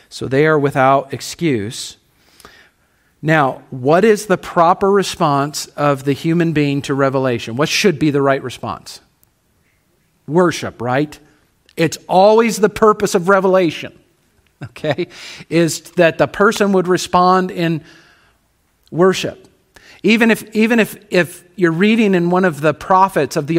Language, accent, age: English, American, 40-59